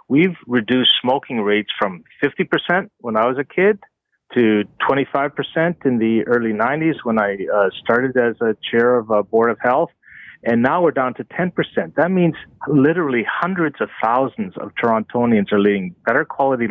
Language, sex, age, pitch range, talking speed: English, male, 40-59, 115-145 Hz, 170 wpm